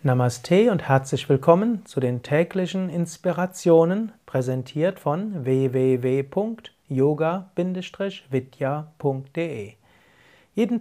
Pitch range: 135-175 Hz